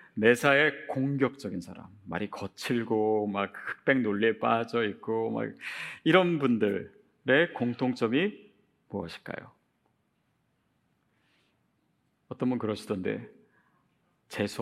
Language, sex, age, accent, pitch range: Korean, male, 40-59, native, 120-190 Hz